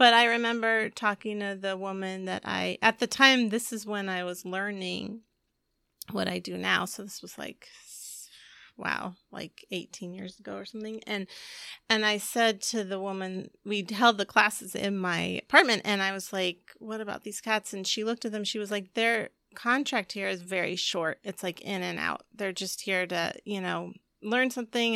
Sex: female